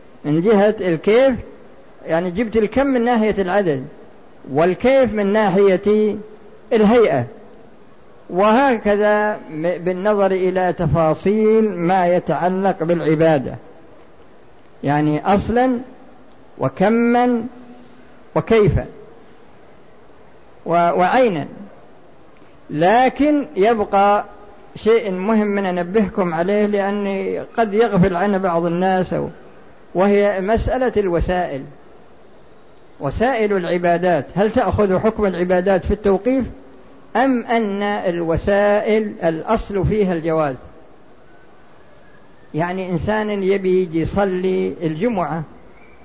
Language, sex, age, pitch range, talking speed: Arabic, female, 50-69, 180-220 Hz, 80 wpm